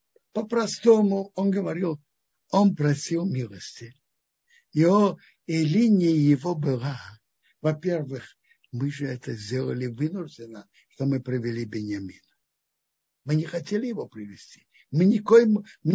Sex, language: male, Russian